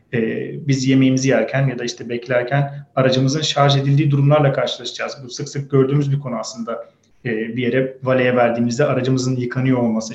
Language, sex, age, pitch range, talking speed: Turkish, male, 30-49, 125-155 Hz, 155 wpm